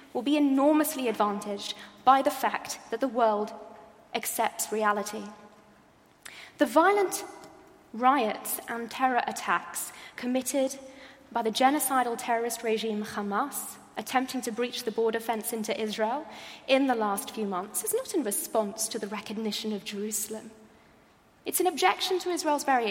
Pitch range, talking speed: 220-280 Hz, 140 wpm